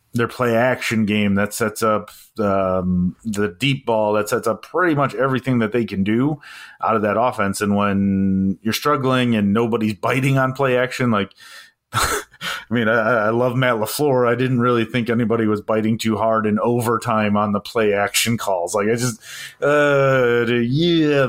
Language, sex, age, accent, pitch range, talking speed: English, male, 30-49, American, 105-125 Hz, 180 wpm